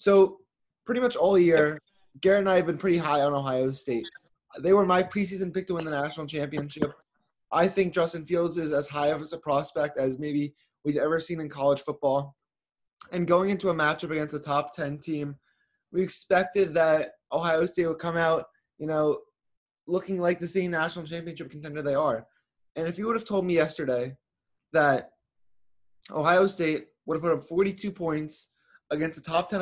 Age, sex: 20-39, male